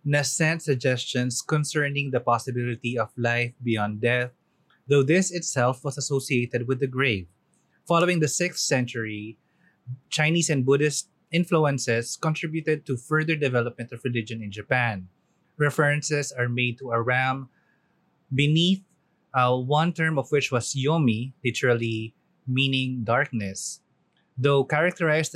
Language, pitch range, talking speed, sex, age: Filipino, 120-150 Hz, 125 wpm, male, 20-39